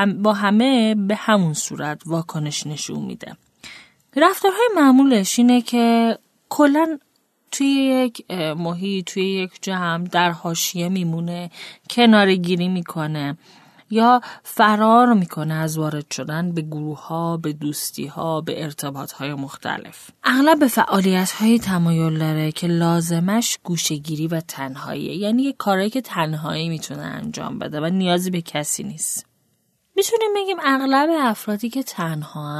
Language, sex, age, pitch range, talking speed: Persian, female, 30-49, 160-215 Hz, 130 wpm